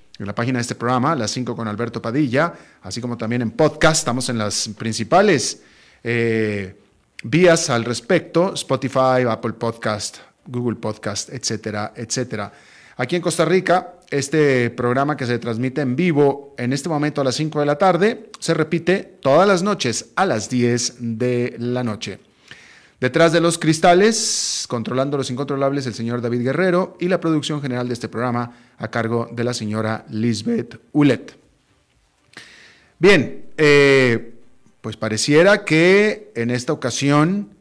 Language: Spanish